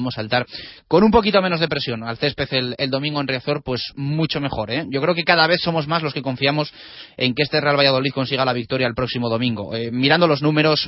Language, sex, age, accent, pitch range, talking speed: Spanish, male, 30-49, Spanish, 125-160 Hz, 235 wpm